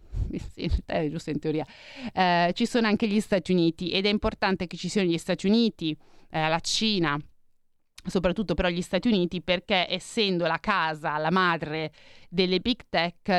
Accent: native